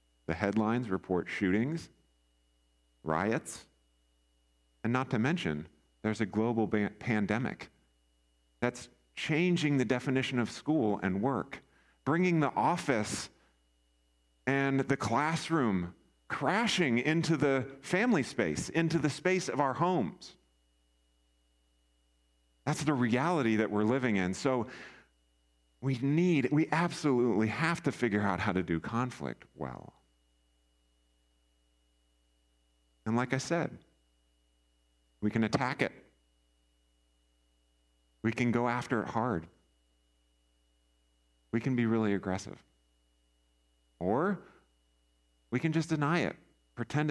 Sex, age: male, 40-59